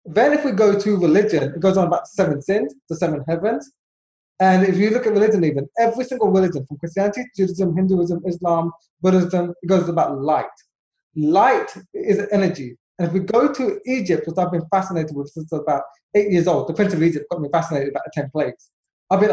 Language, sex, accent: English, male, British